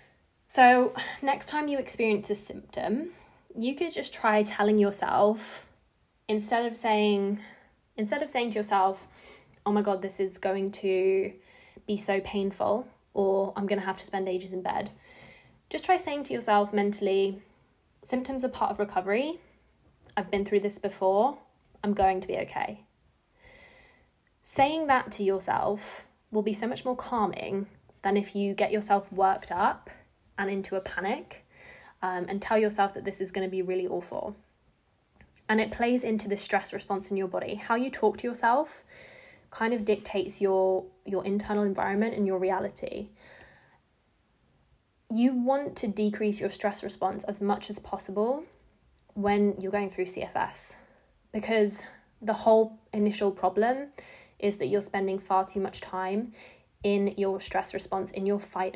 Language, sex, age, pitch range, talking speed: English, female, 10-29, 195-225 Hz, 160 wpm